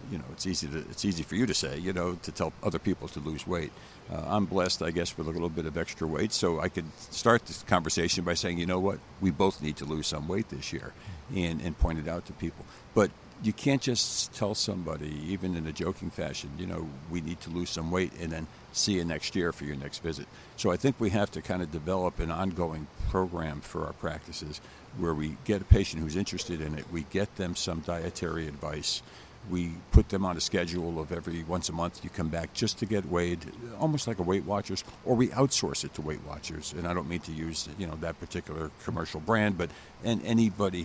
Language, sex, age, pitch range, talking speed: English, male, 60-79, 80-95 Hz, 240 wpm